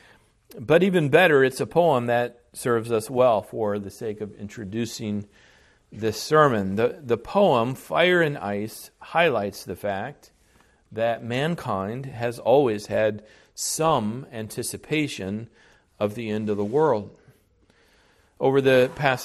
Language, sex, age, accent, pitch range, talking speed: English, male, 40-59, American, 105-140 Hz, 130 wpm